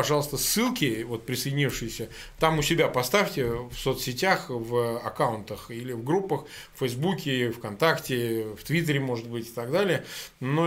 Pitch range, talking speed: 130-180 Hz, 145 wpm